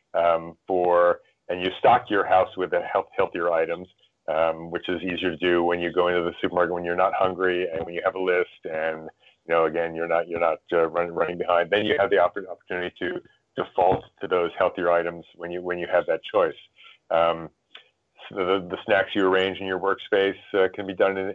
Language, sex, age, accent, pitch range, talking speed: English, male, 40-59, American, 85-100 Hz, 225 wpm